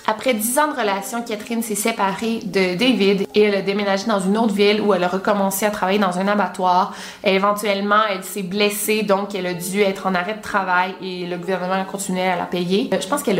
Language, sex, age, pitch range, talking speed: French, female, 20-39, 190-225 Hz, 230 wpm